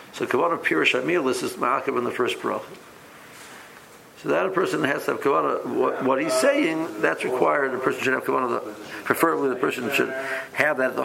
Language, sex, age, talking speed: English, male, 60-79, 205 wpm